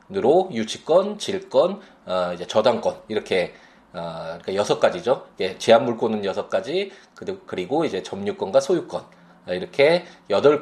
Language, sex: Korean, male